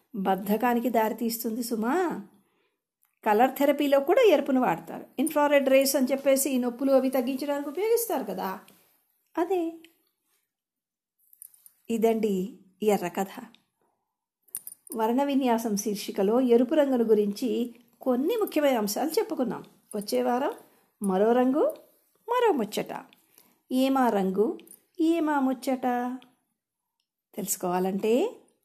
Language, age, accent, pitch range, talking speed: Telugu, 50-69, native, 215-275 Hz, 90 wpm